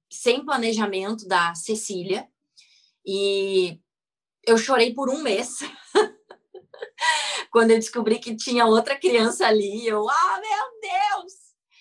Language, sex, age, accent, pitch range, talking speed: Portuguese, female, 20-39, Brazilian, 195-235 Hz, 110 wpm